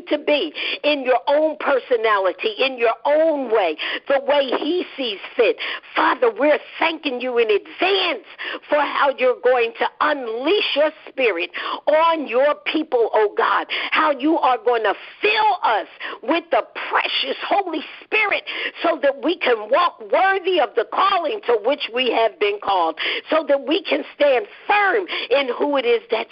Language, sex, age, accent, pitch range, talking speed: English, female, 50-69, American, 275-375 Hz, 165 wpm